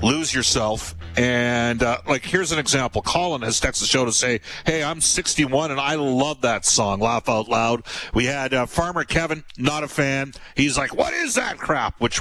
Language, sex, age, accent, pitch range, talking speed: English, male, 50-69, American, 100-140 Hz, 200 wpm